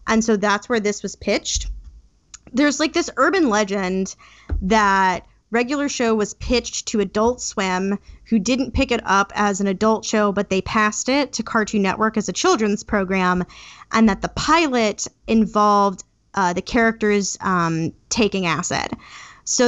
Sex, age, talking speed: female, 10-29, 160 wpm